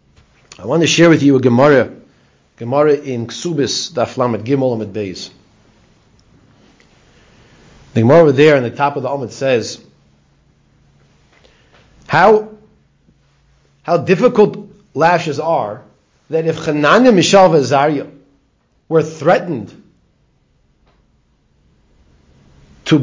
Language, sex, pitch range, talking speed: English, male, 130-180 Hz, 105 wpm